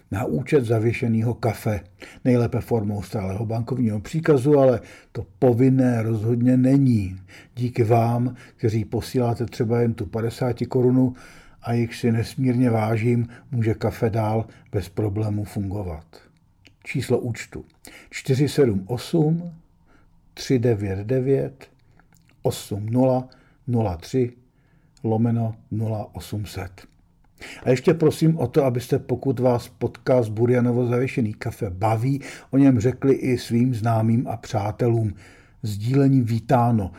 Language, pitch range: Czech, 110-130 Hz